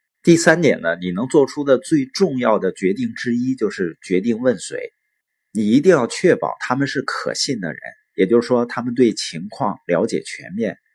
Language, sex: Chinese, male